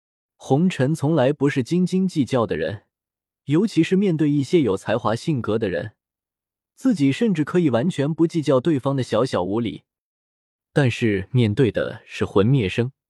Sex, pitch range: male, 115-170 Hz